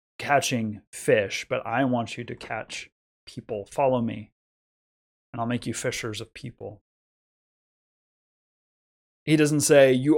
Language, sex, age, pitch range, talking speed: English, male, 20-39, 115-135 Hz, 130 wpm